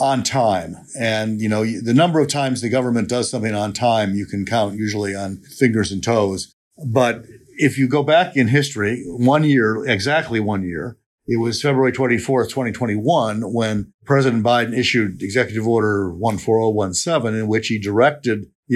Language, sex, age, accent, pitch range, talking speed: English, male, 50-69, American, 105-130 Hz, 165 wpm